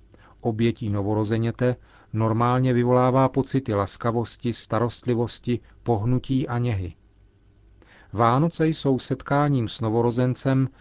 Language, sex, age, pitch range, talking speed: Czech, male, 40-59, 105-125 Hz, 85 wpm